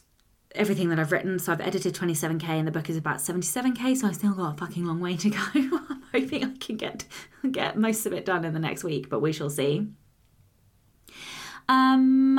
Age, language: 20-39, English